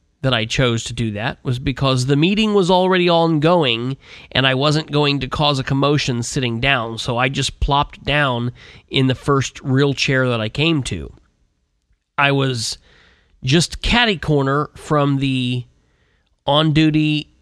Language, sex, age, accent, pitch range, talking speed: English, male, 30-49, American, 110-150 Hz, 150 wpm